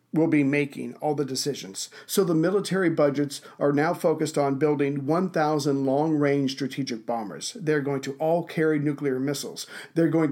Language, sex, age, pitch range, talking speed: English, male, 50-69, 140-160 Hz, 165 wpm